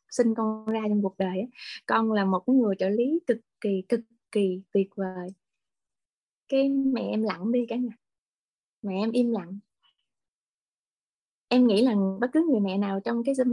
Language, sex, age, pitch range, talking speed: Vietnamese, female, 20-39, 200-260 Hz, 175 wpm